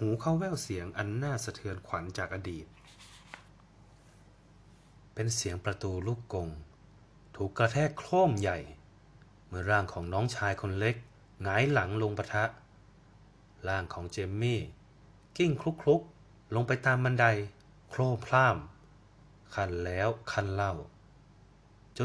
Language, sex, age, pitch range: Thai, male, 20-39, 95-125 Hz